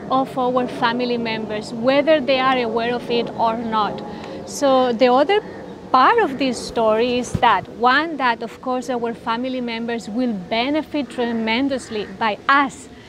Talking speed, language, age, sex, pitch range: 150 wpm, English, 30-49, female, 230-275 Hz